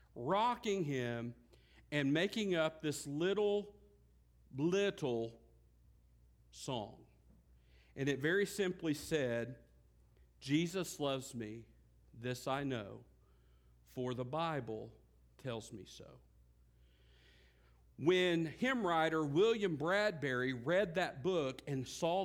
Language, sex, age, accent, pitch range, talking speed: English, male, 50-69, American, 120-170 Hz, 95 wpm